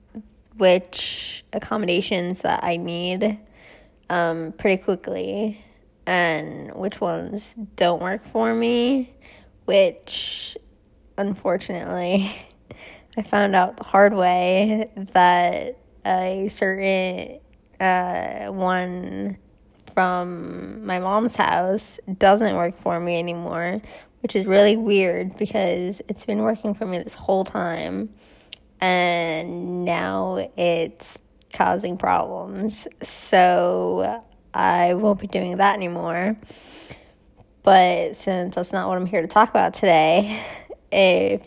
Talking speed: 105 wpm